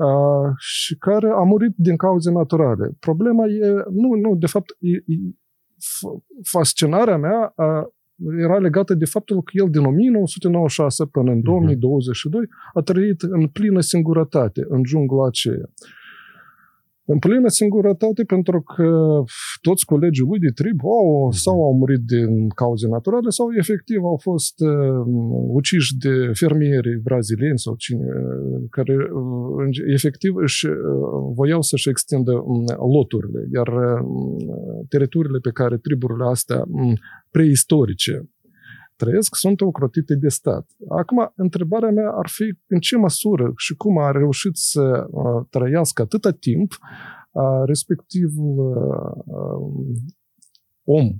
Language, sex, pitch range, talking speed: Romanian, male, 130-180 Hz, 120 wpm